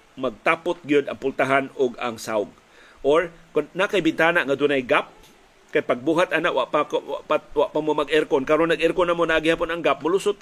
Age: 40-59